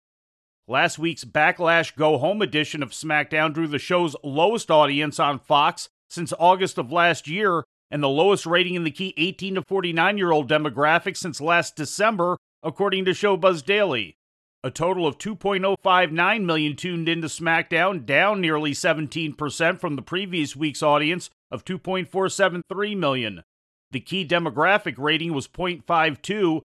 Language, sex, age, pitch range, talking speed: English, male, 40-59, 150-185 Hz, 140 wpm